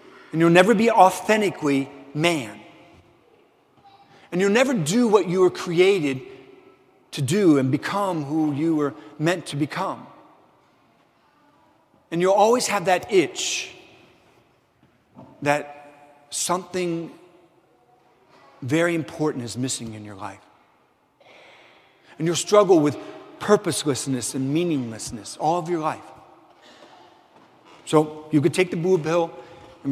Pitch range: 145-200 Hz